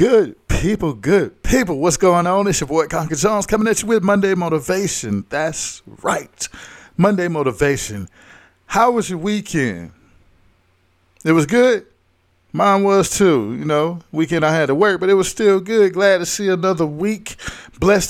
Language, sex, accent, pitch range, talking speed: English, male, American, 115-160 Hz, 165 wpm